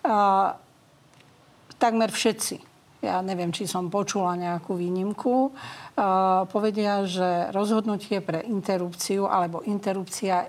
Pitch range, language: 185-220 Hz, Slovak